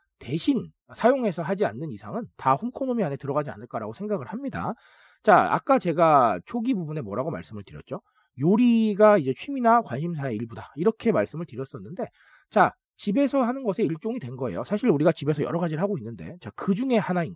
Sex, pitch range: male, 145-230 Hz